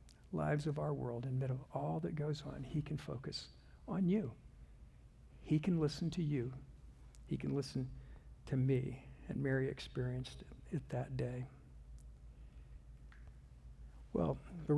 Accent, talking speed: American, 140 wpm